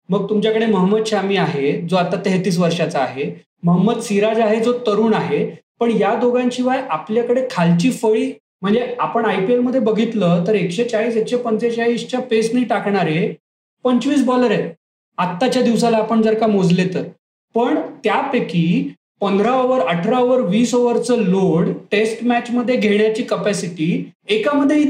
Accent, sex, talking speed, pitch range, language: native, male, 140 wpm, 200-245 Hz, Marathi